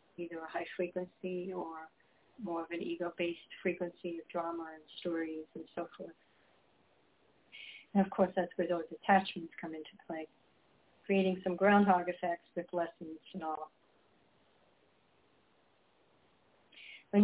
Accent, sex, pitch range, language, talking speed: American, female, 175-195 Hz, English, 125 wpm